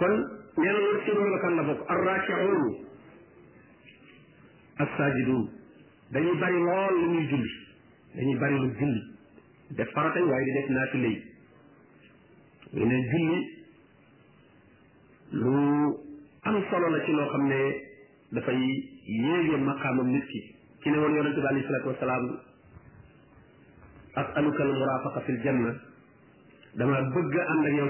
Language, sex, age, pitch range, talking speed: French, male, 50-69, 125-165 Hz, 60 wpm